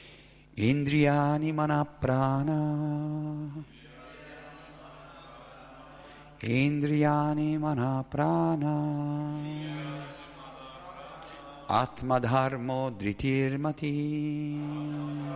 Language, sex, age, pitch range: Italian, male, 50-69, 135-150 Hz